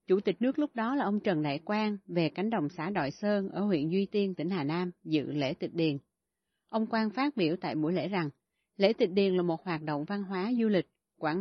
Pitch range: 170-215 Hz